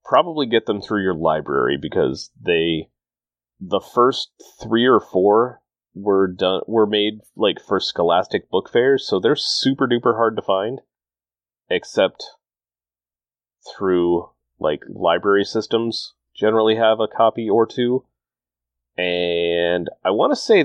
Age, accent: 30-49, American